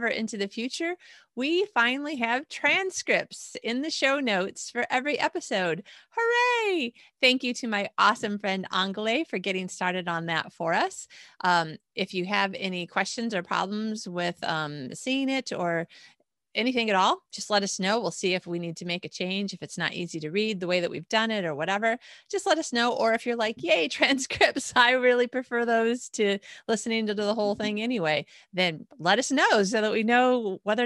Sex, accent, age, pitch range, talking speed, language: female, American, 30-49, 190-250 Hz, 200 wpm, English